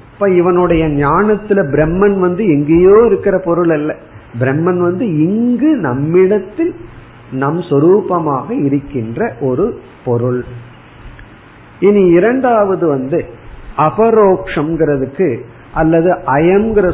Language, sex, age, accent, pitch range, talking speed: Tamil, male, 50-69, native, 140-195 Hz, 85 wpm